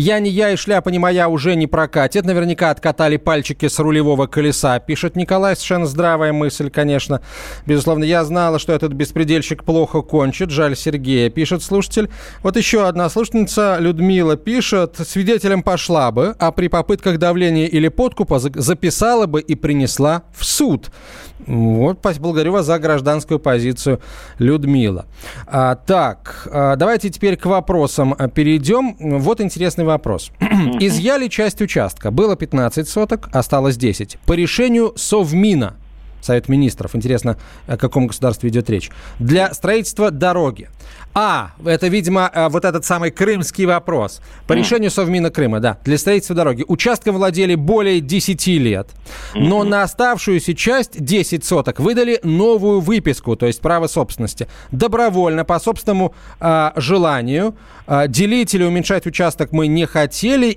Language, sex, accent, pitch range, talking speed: Russian, male, native, 145-195 Hz, 140 wpm